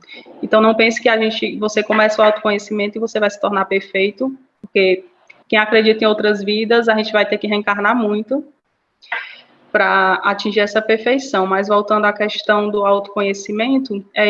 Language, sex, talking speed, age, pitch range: Portuguese, female, 170 wpm, 20-39, 210-260 Hz